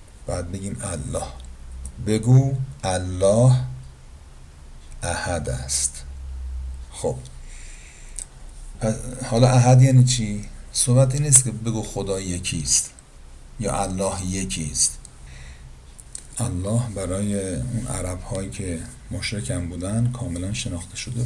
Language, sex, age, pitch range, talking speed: Persian, male, 50-69, 85-120 Hz, 100 wpm